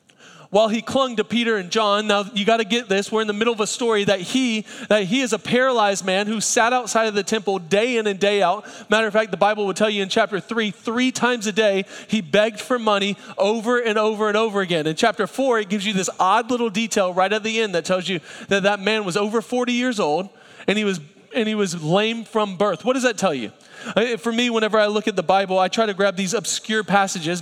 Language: English